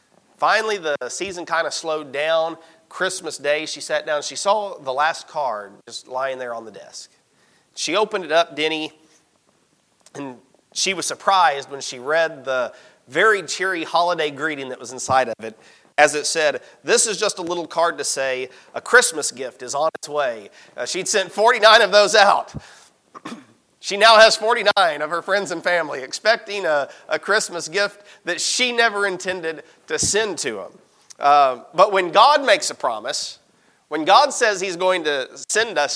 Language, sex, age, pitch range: English, male, 40-59, 145-200 Hz